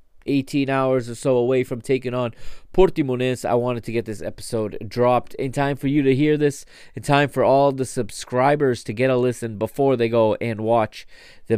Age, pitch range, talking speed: 20-39, 115-145 Hz, 200 wpm